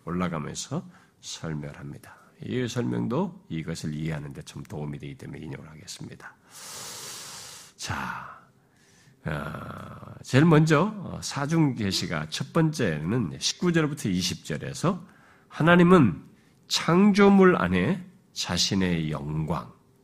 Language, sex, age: Korean, male, 50-69